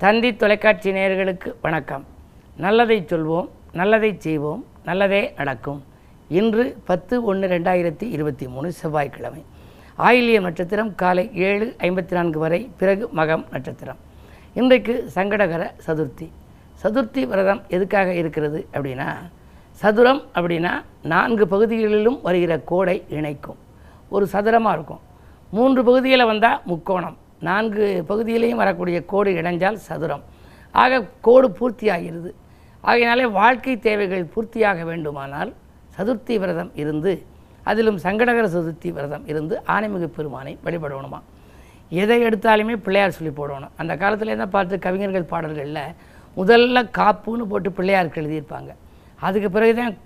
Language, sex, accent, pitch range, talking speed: Tamil, female, native, 165-220 Hz, 105 wpm